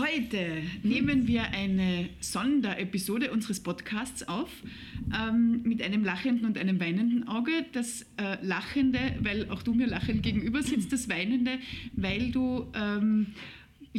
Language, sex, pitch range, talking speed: German, female, 205-255 Hz, 135 wpm